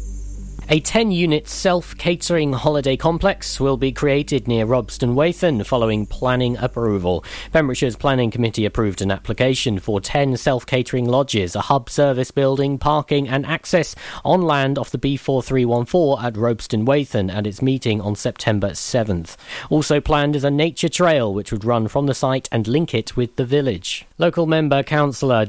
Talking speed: 150 wpm